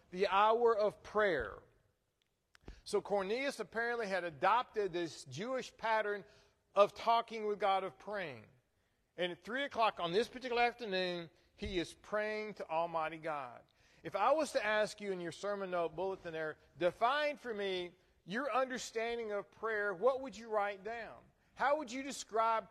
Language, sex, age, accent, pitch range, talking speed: English, male, 40-59, American, 195-245 Hz, 160 wpm